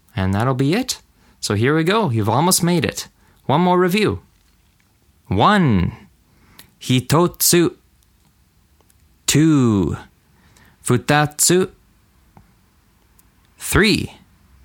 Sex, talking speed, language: male, 80 wpm, English